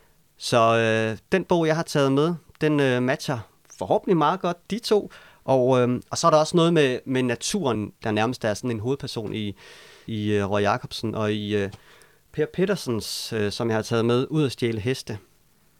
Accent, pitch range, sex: native, 115-150 Hz, male